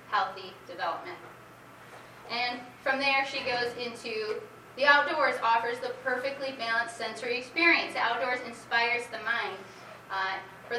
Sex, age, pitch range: female, 20-39, 200-255 Hz